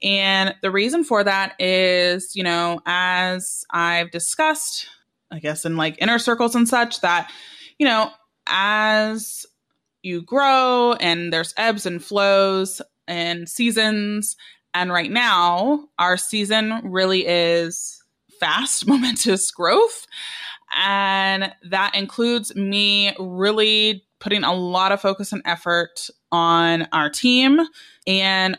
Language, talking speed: English, 120 wpm